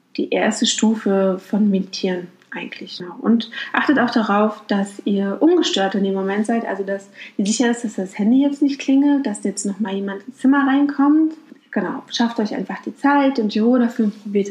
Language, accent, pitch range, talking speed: German, German, 200-265 Hz, 190 wpm